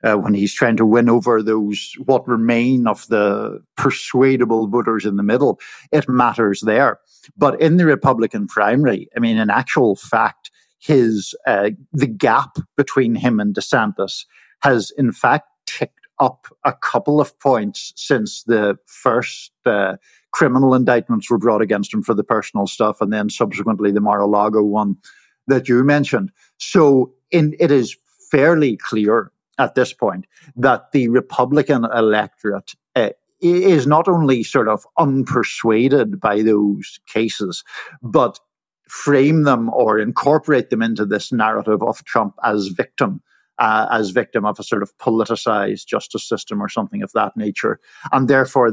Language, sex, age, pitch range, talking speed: English, male, 50-69, 105-135 Hz, 150 wpm